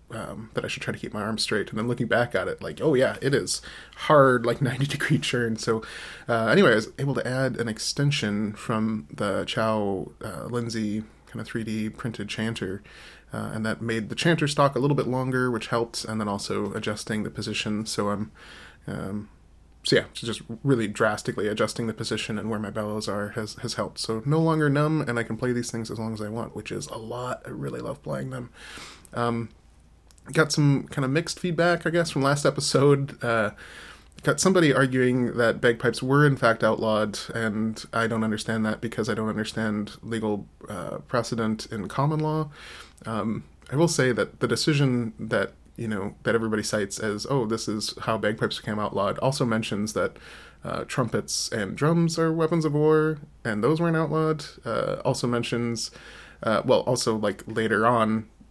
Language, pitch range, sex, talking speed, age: English, 110-135 Hz, male, 195 wpm, 20-39